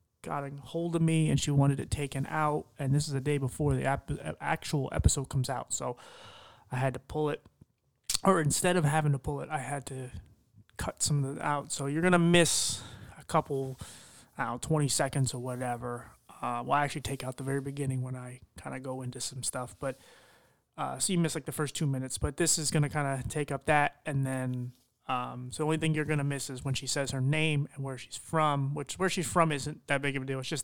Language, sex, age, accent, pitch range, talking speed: English, male, 30-49, American, 130-150 Hz, 250 wpm